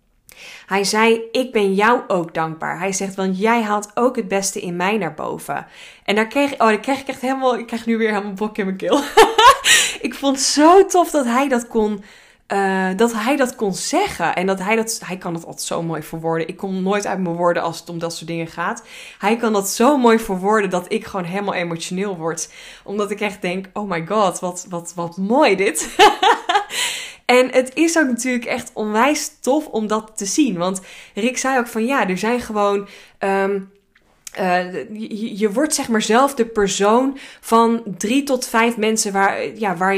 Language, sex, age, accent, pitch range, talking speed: Dutch, female, 20-39, Dutch, 190-240 Hz, 205 wpm